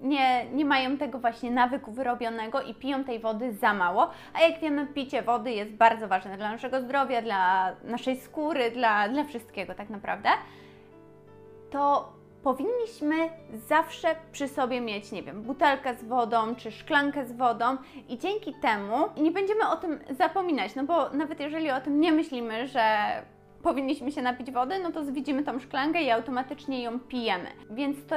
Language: Polish